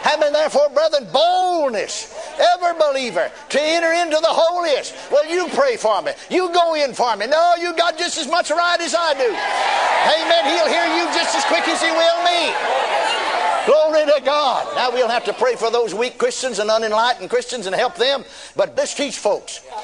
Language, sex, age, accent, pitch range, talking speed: English, male, 60-79, American, 270-335 Hz, 195 wpm